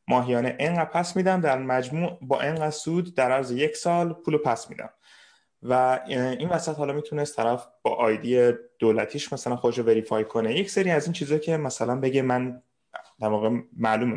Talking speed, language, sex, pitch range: 180 wpm, Persian, male, 115-155 Hz